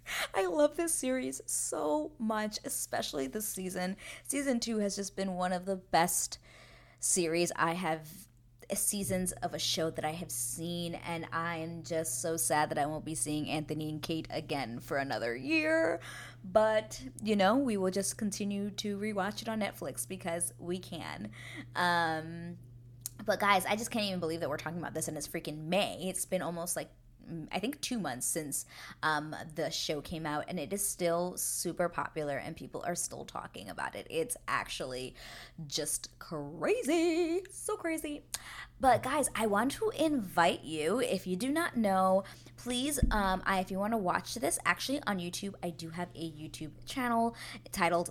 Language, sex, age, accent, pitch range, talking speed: English, female, 20-39, American, 155-215 Hz, 175 wpm